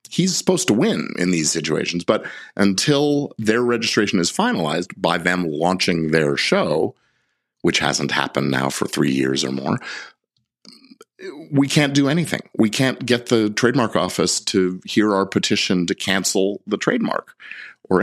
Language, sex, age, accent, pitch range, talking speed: English, male, 50-69, American, 80-125 Hz, 155 wpm